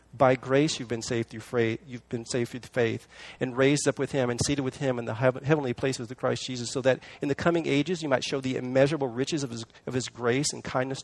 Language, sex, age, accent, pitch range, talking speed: English, male, 40-59, American, 110-140 Hz, 255 wpm